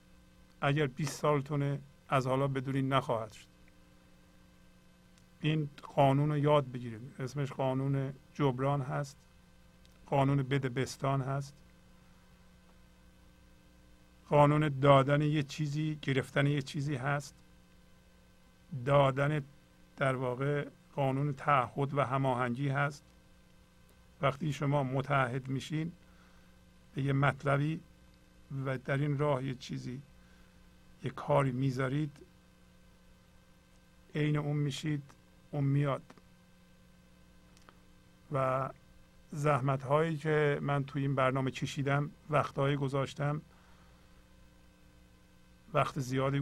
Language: Persian